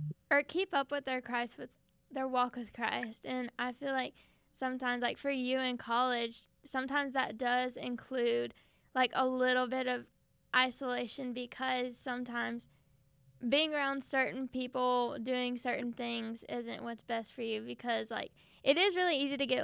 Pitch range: 245-290 Hz